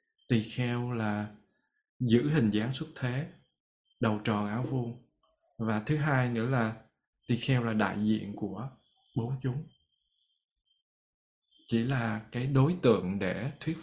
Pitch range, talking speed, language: 110-135 Hz, 140 wpm, Vietnamese